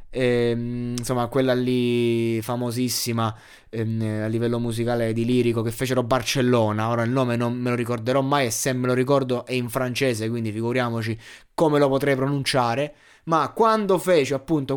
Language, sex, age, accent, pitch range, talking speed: Italian, male, 20-39, native, 110-135 Hz, 165 wpm